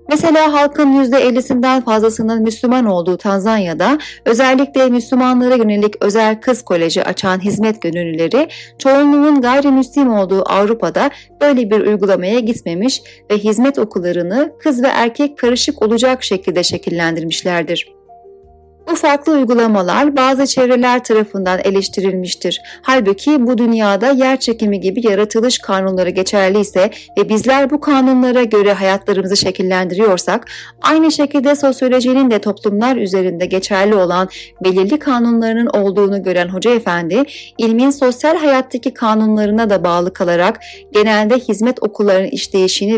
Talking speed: 115 wpm